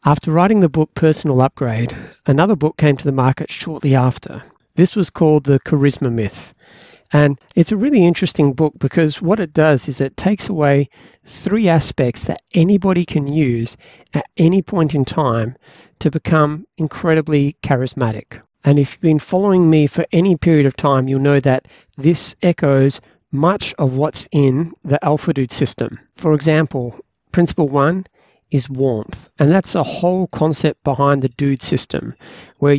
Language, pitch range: English, 135-165 Hz